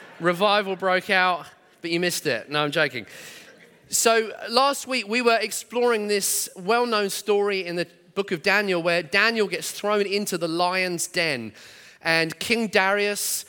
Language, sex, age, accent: English, male, 30-49, British